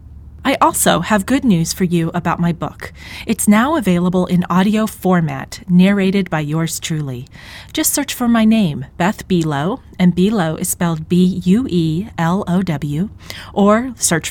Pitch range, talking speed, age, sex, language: 165-220 Hz, 165 wpm, 30-49, female, English